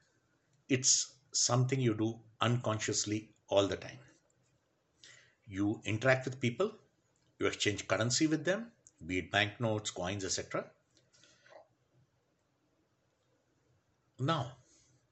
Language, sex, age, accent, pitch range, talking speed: English, male, 60-79, Indian, 115-165 Hz, 90 wpm